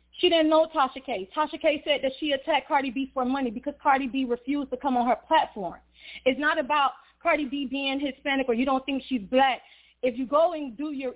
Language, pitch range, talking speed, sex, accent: English, 240-290 Hz, 230 wpm, female, American